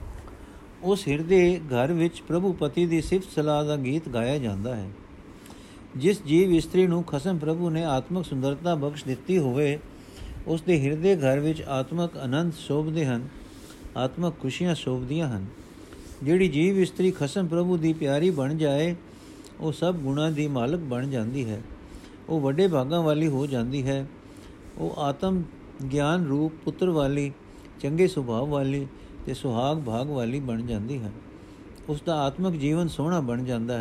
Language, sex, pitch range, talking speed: Punjabi, male, 135-170 Hz, 140 wpm